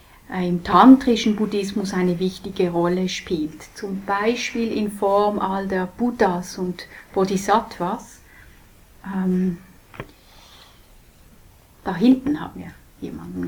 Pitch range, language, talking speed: 185-230 Hz, English, 100 wpm